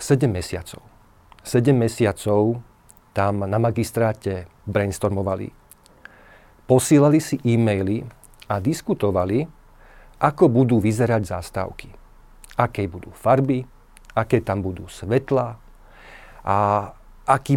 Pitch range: 105-135 Hz